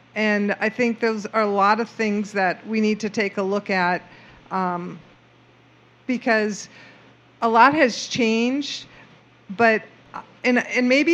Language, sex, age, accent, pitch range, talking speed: English, female, 50-69, American, 195-235 Hz, 145 wpm